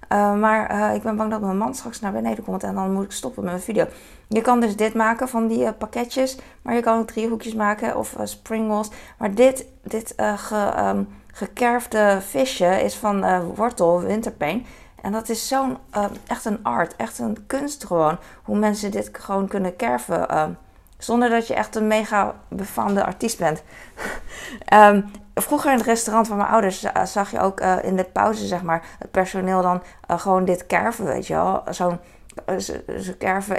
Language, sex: Dutch, female